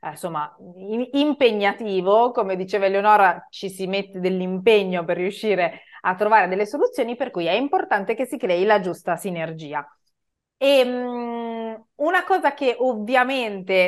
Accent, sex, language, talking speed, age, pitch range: Italian, female, English, 130 wpm, 30-49, 180-230 Hz